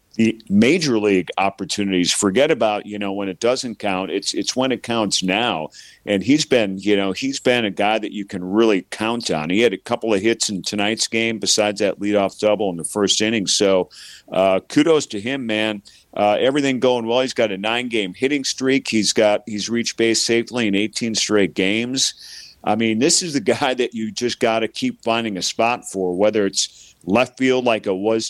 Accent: American